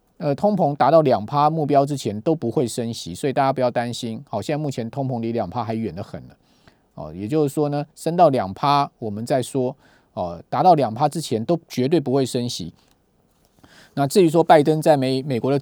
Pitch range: 115-145 Hz